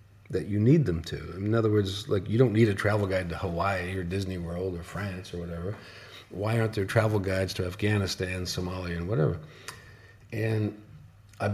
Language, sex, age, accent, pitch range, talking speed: English, male, 50-69, American, 95-115 Hz, 185 wpm